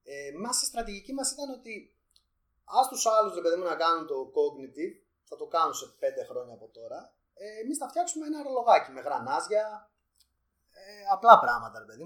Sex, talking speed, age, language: male, 190 wpm, 30-49, Greek